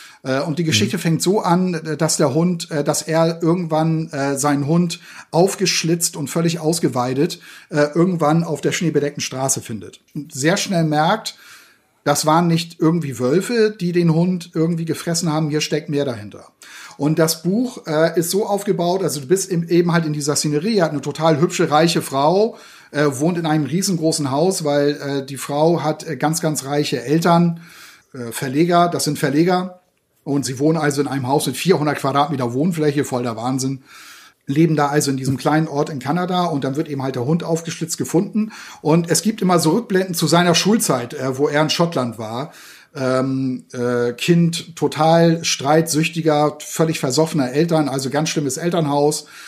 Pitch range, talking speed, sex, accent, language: 145-170 Hz, 170 wpm, male, German, German